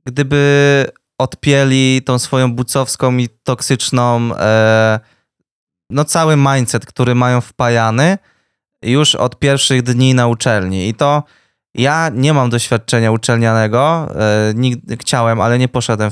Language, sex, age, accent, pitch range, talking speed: Polish, male, 20-39, native, 115-140 Hz, 125 wpm